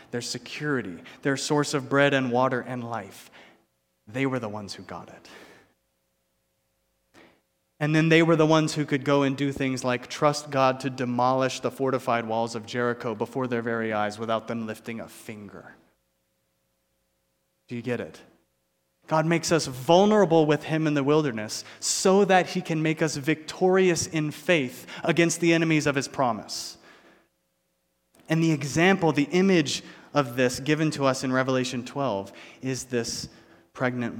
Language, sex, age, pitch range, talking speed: English, male, 30-49, 110-150 Hz, 160 wpm